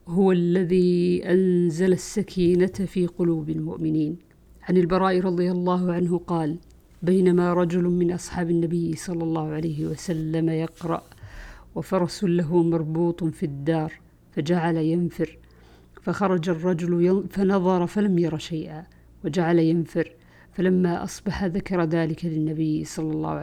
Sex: female